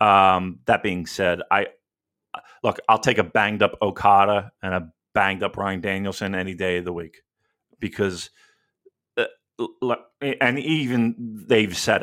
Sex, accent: male, American